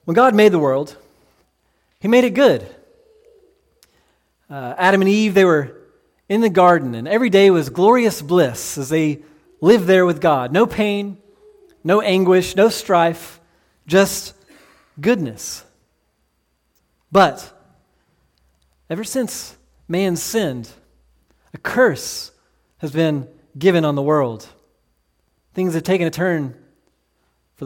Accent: American